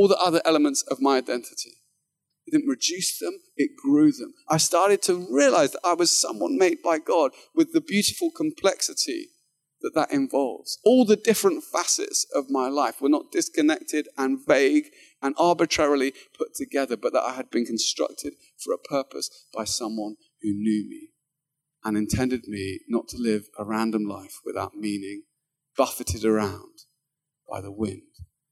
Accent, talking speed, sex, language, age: British, 165 wpm, male, English, 30-49